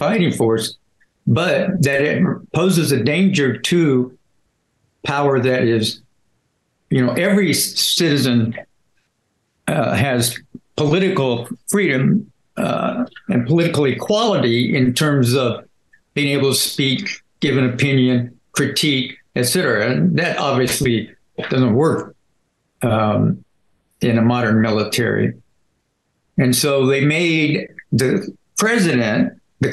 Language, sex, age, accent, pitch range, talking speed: English, male, 60-79, American, 125-170 Hz, 105 wpm